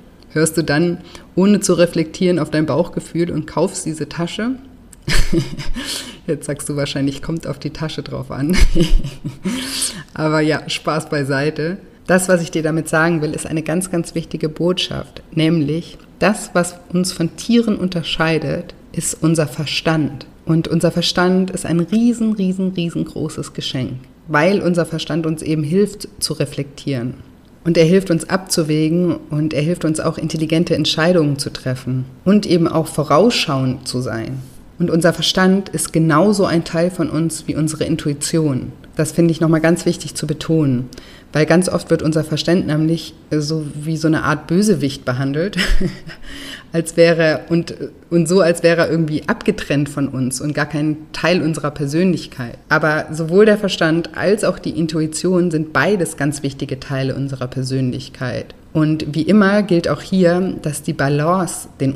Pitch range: 150-175 Hz